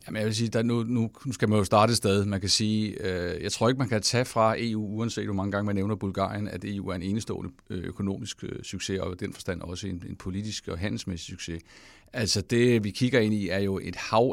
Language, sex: English, male